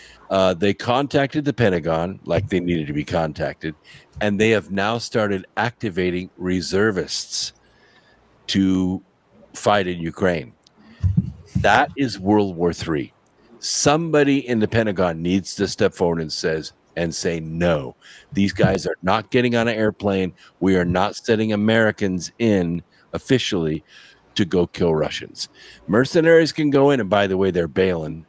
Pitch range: 85-110 Hz